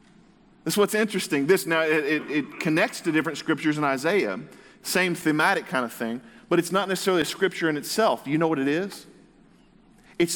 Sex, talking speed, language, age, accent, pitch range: male, 205 wpm, English, 40-59, American, 140-190 Hz